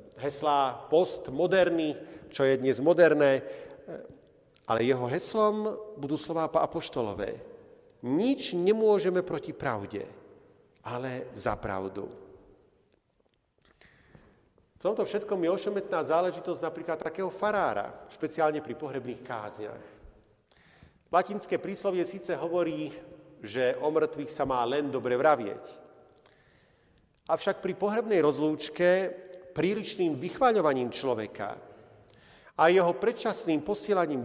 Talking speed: 95 wpm